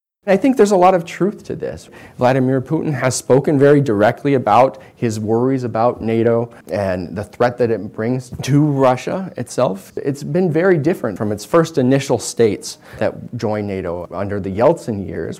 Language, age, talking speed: English, 30-49, 175 wpm